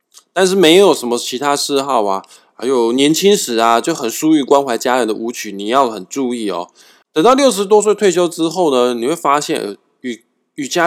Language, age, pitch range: Chinese, 20-39, 115-165 Hz